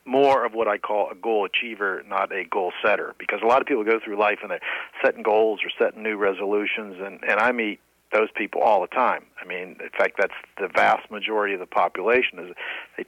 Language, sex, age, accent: English, male, 50-69, American